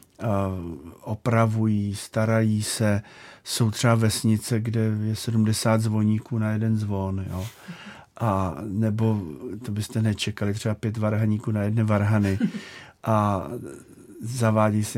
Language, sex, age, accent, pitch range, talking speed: Czech, male, 40-59, native, 105-120 Hz, 115 wpm